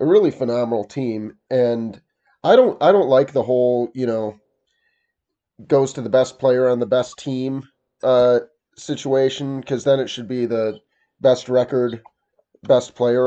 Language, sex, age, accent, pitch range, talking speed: English, male, 30-49, American, 115-135 Hz, 160 wpm